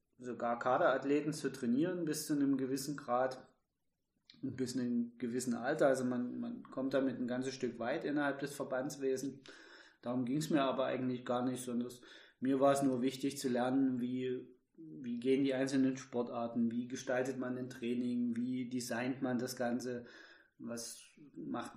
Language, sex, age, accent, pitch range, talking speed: German, male, 20-39, German, 125-140 Hz, 170 wpm